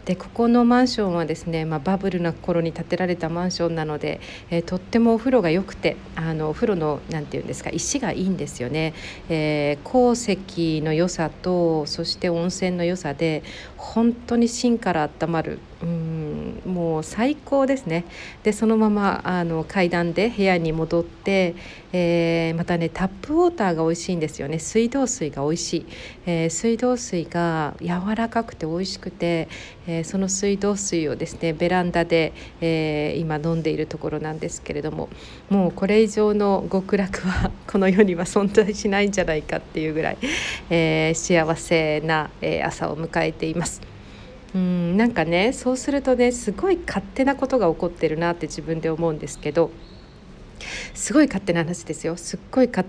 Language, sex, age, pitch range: Japanese, female, 50-69, 160-215 Hz